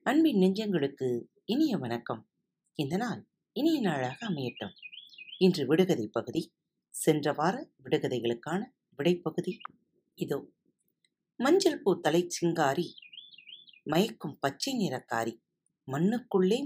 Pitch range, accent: 145-200 Hz, native